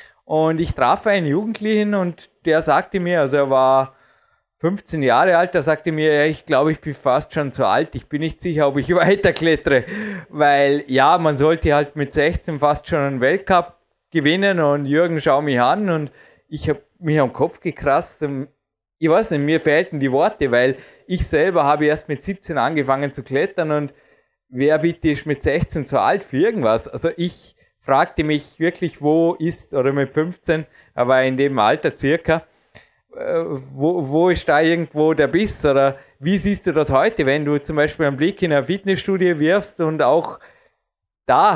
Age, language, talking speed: 20-39, German, 185 wpm